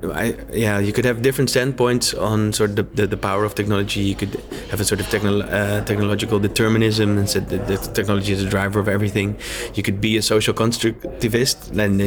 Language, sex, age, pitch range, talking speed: Swedish, male, 20-39, 100-110 Hz, 215 wpm